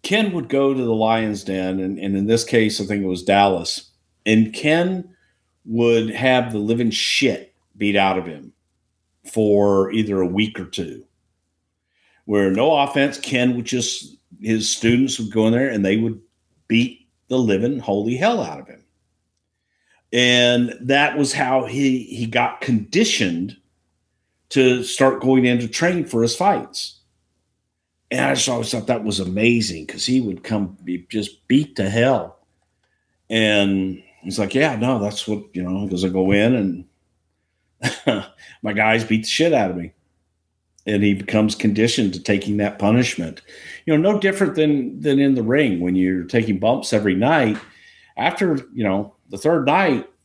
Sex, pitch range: male, 95-125 Hz